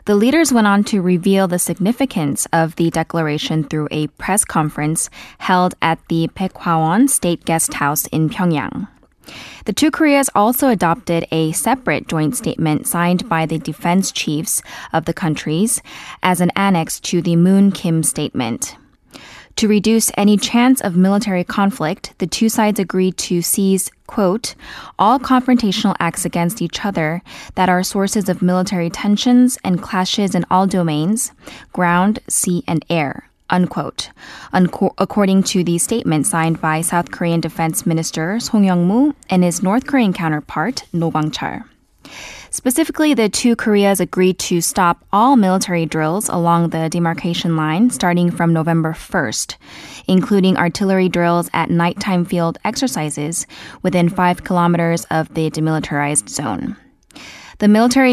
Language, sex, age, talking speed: English, female, 10-29, 145 wpm